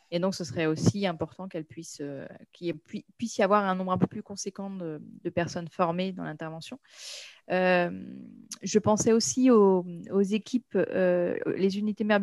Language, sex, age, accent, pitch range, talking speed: French, female, 30-49, French, 170-210 Hz, 170 wpm